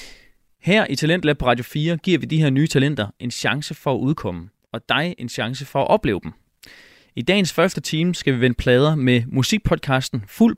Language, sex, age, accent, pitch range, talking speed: Danish, male, 20-39, native, 120-160 Hz, 210 wpm